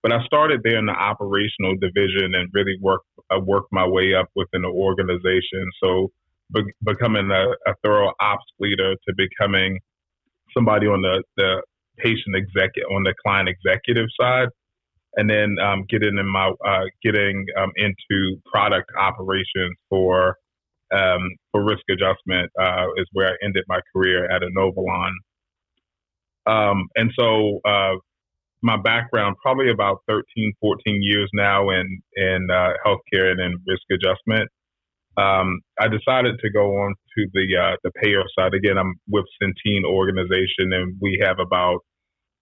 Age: 30-49